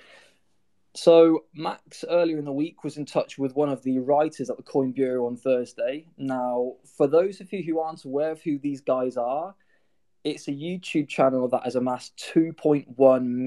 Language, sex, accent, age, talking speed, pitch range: English, male, British, 20-39, 185 wpm, 125-150 Hz